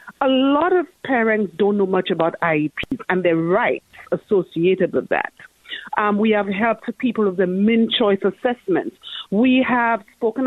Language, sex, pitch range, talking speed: English, female, 180-250 Hz, 160 wpm